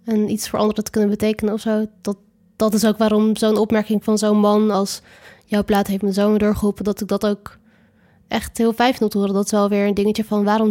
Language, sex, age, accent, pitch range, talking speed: Dutch, female, 20-39, Dutch, 200-220 Hz, 240 wpm